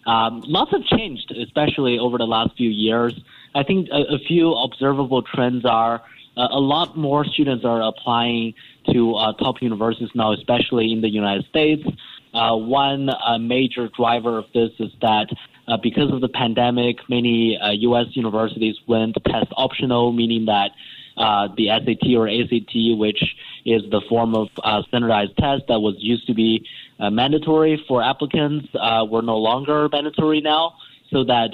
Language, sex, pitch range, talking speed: English, male, 110-130 Hz, 165 wpm